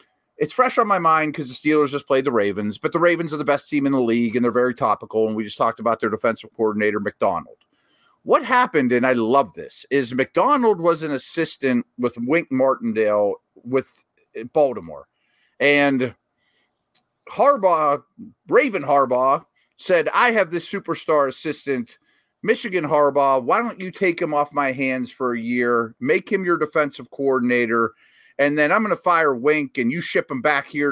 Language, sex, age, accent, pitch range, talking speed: English, male, 40-59, American, 120-170 Hz, 180 wpm